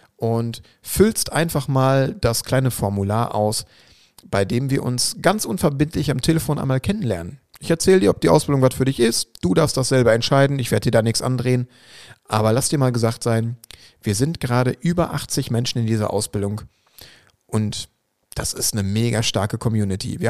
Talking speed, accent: 185 wpm, German